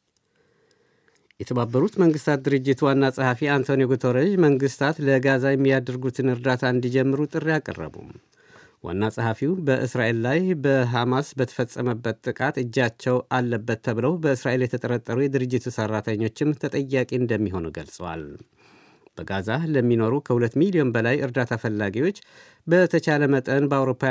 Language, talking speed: Amharic, 100 wpm